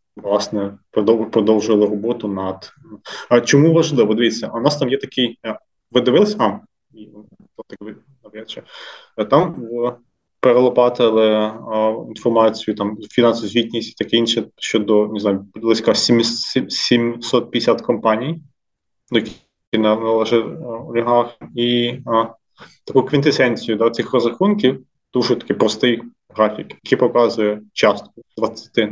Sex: male